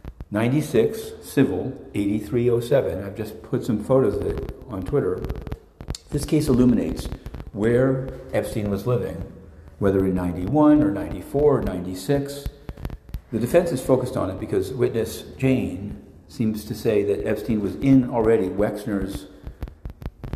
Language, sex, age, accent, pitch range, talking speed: English, male, 50-69, American, 95-130 Hz, 130 wpm